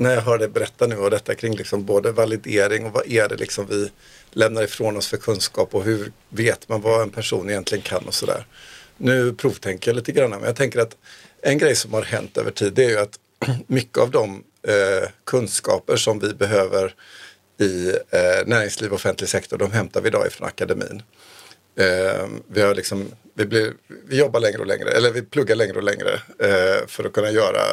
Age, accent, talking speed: 50-69, native, 210 wpm